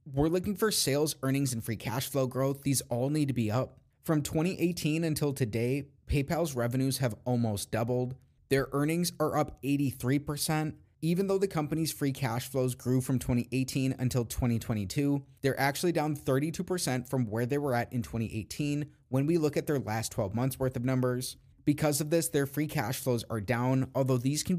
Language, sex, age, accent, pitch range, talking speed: English, male, 30-49, American, 120-145 Hz, 185 wpm